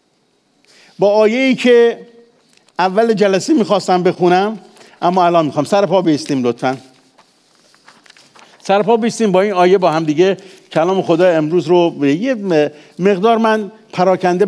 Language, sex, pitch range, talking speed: English, male, 135-190 Hz, 130 wpm